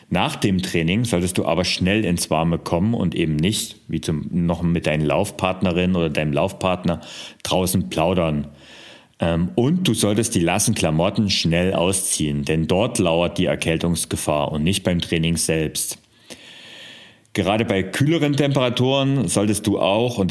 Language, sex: German, male